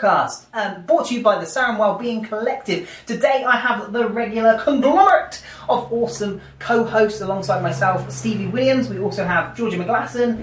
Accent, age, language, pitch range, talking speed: British, 20-39, English, 170-240 Hz, 155 wpm